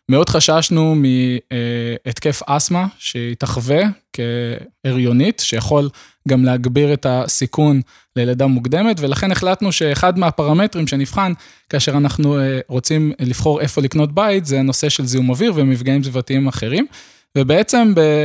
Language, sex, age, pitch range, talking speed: Hebrew, male, 20-39, 130-160 Hz, 115 wpm